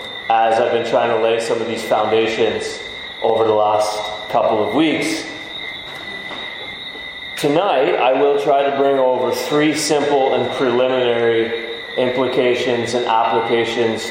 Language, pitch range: English, 110-135 Hz